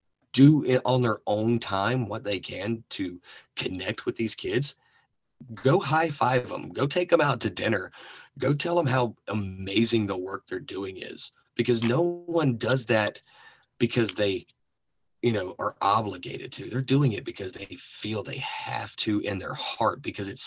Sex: male